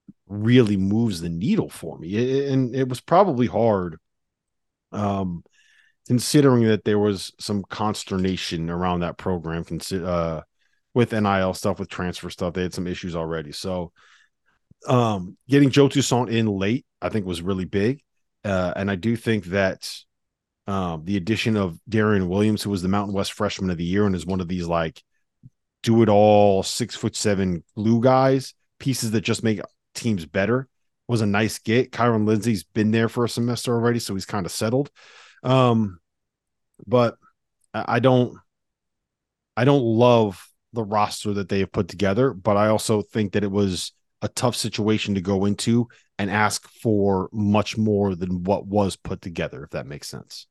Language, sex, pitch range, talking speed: English, male, 95-115 Hz, 170 wpm